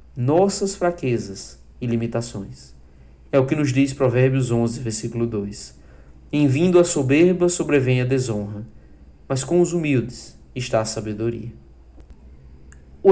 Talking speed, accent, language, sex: 130 wpm, Brazilian, Portuguese, male